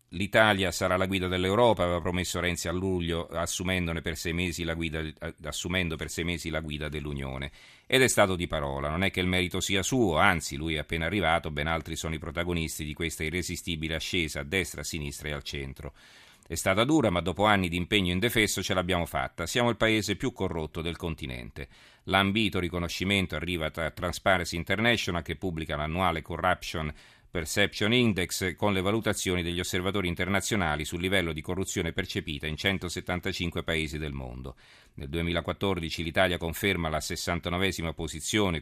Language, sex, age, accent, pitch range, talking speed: Italian, male, 40-59, native, 80-95 Hz, 170 wpm